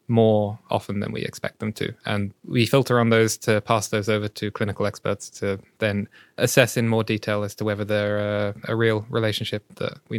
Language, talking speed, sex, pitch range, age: English, 205 wpm, male, 105-120 Hz, 20-39